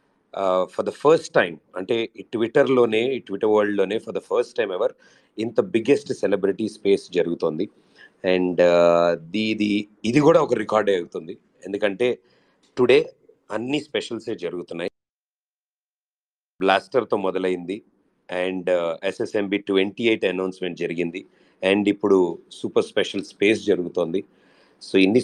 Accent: native